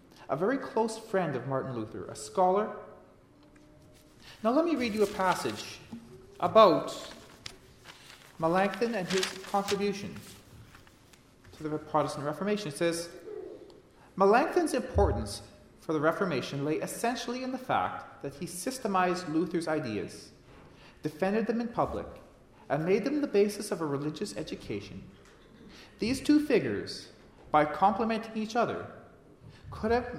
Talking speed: 125 wpm